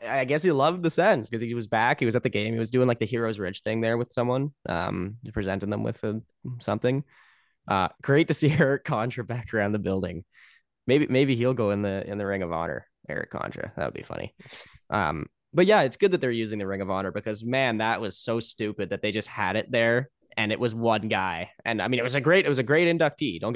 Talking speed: 255 wpm